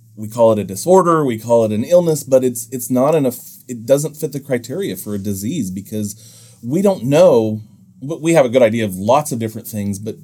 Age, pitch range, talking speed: 30-49, 100-130 Hz, 230 wpm